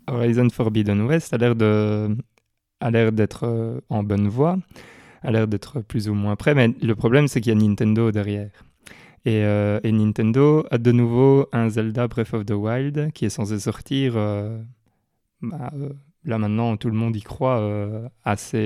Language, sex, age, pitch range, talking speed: French, male, 20-39, 110-130 Hz, 185 wpm